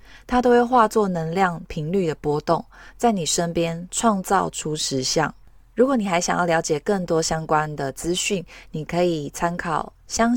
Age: 20-39